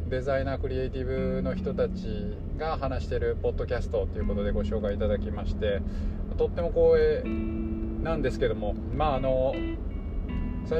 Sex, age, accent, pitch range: male, 20-39, native, 90-125 Hz